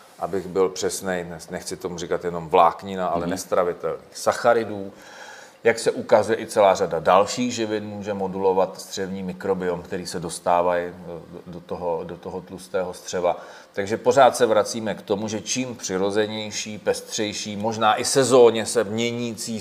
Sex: male